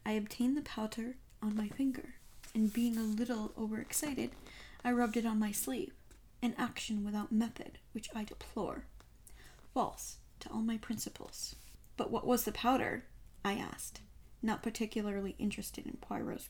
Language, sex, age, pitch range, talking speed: English, female, 10-29, 210-240 Hz, 155 wpm